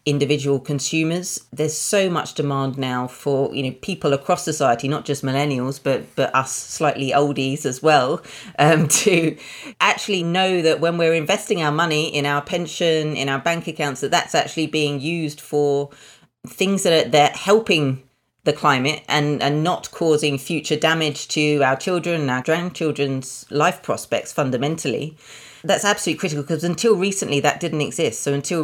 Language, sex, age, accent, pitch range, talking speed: English, female, 30-49, British, 140-170 Hz, 170 wpm